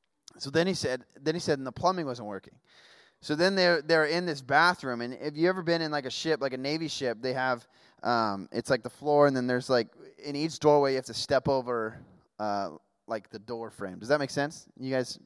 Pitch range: 130-170 Hz